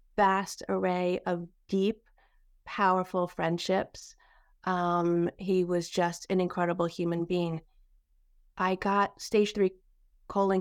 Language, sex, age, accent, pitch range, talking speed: English, female, 30-49, American, 180-220 Hz, 105 wpm